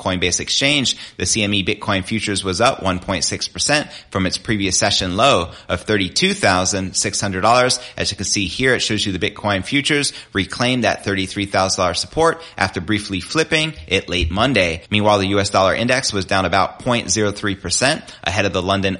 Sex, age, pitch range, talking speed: male, 30-49, 95-120 Hz, 160 wpm